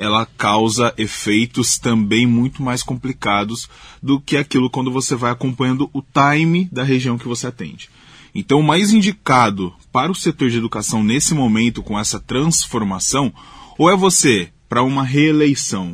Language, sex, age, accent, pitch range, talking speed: Portuguese, male, 20-39, Brazilian, 115-155 Hz, 155 wpm